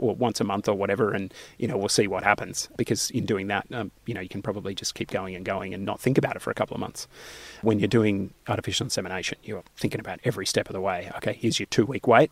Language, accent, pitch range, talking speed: English, Australian, 100-115 Hz, 280 wpm